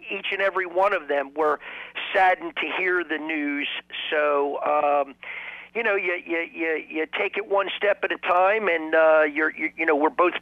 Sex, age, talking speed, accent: male, 50-69, 200 wpm, American